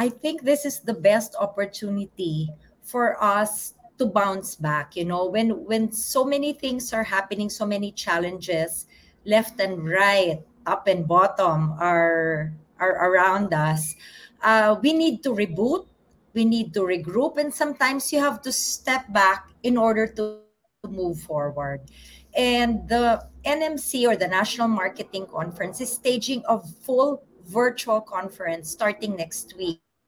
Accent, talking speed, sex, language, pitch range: Filipino, 145 wpm, female, English, 180-240 Hz